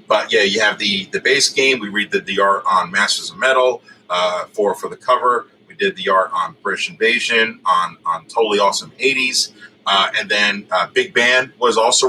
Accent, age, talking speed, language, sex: American, 30-49, 210 wpm, English, male